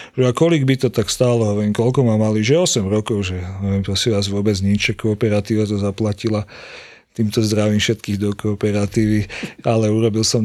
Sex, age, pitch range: male, 40-59, 110-130 Hz